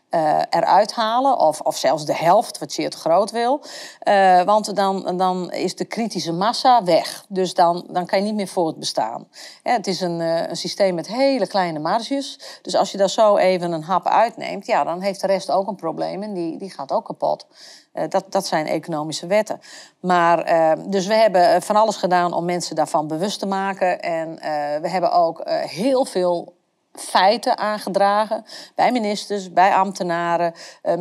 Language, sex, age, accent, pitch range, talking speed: Dutch, female, 40-59, Dutch, 170-210 Hz, 185 wpm